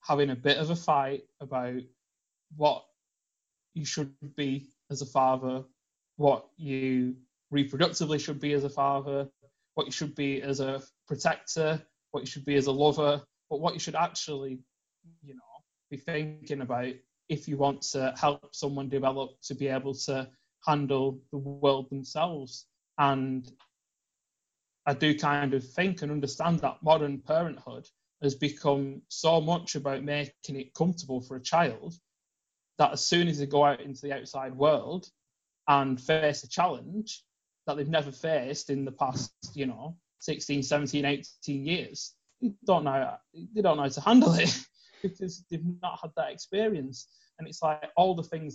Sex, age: male, 20-39